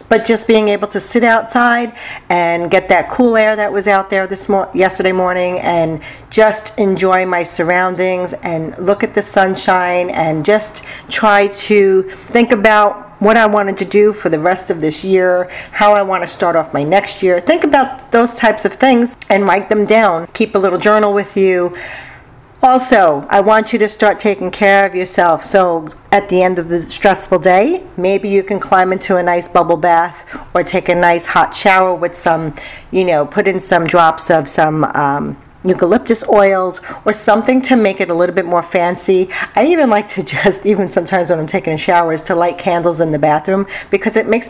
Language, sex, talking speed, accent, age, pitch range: English, female, 200 wpm, American, 50-69, 175-215 Hz